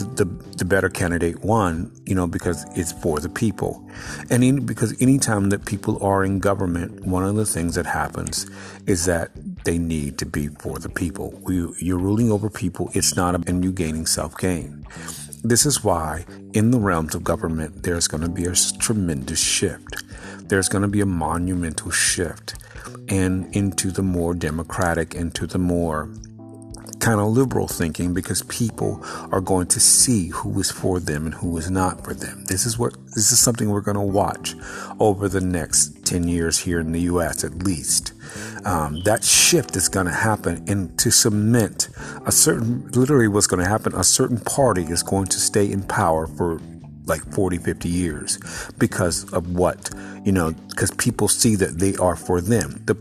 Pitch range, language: 85-105 Hz, English